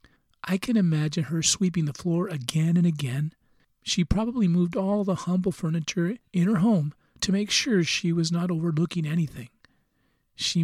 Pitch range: 155-195 Hz